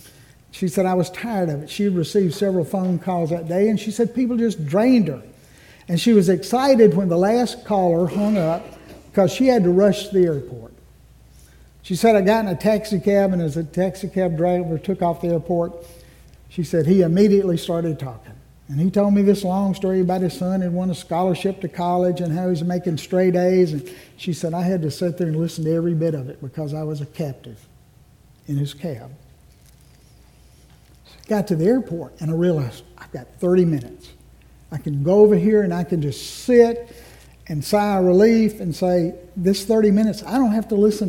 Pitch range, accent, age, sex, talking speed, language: 155-195 Hz, American, 60-79, male, 205 wpm, English